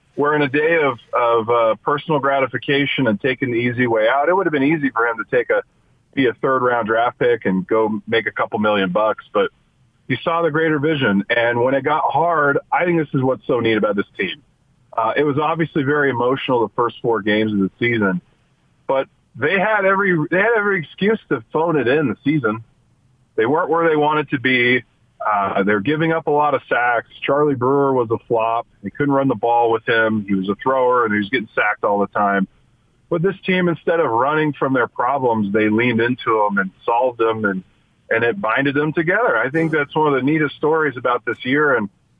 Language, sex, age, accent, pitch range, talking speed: English, male, 40-59, American, 115-155 Hz, 225 wpm